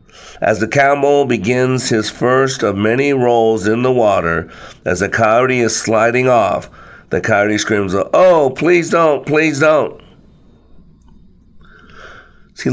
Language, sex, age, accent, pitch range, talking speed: English, male, 50-69, American, 100-130 Hz, 125 wpm